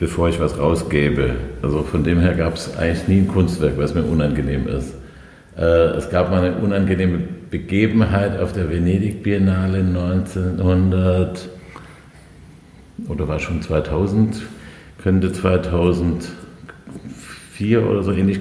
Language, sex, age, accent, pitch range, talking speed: German, male, 50-69, German, 85-95 Hz, 125 wpm